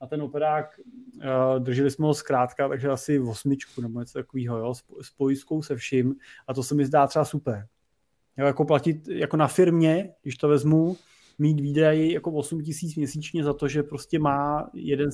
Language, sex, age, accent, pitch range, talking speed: Czech, male, 30-49, native, 135-150 Hz, 165 wpm